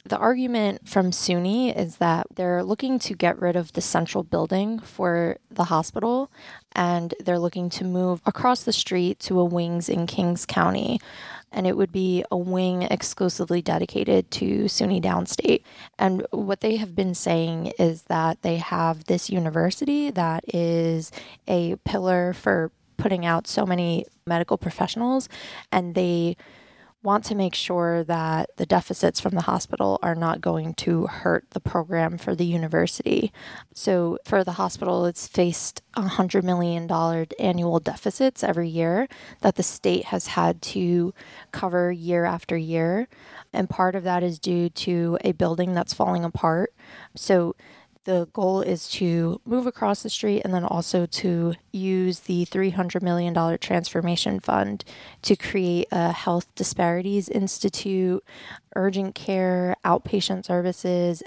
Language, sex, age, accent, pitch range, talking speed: English, female, 20-39, American, 170-195 Hz, 150 wpm